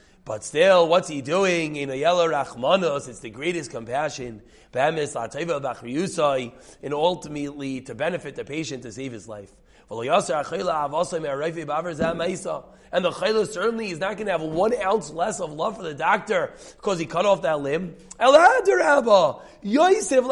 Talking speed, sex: 130 wpm, male